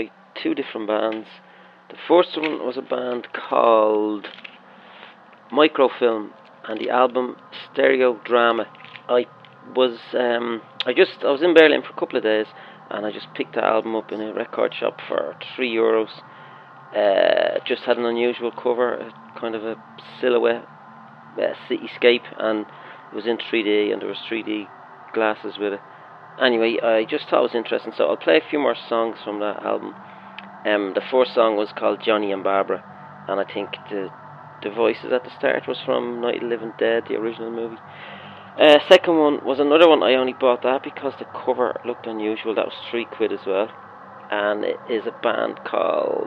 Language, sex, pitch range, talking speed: English, male, 110-130 Hz, 180 wpm